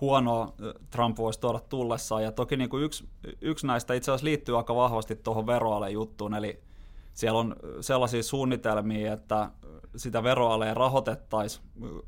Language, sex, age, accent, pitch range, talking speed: Finnish, male, 20-39, native, 105-125 Hz, 145 wpm